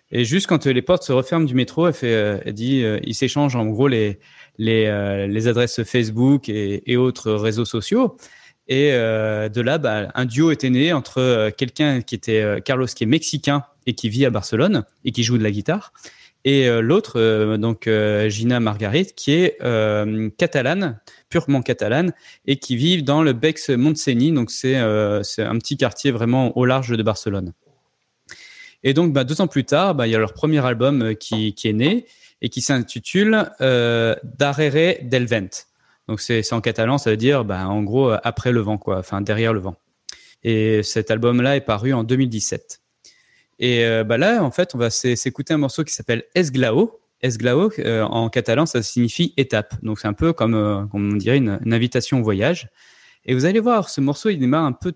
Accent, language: French, French